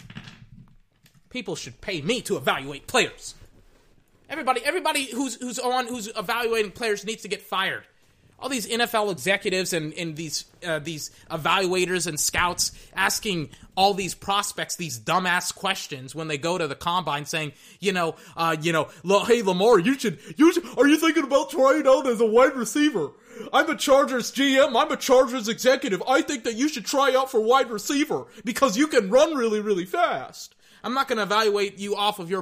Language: English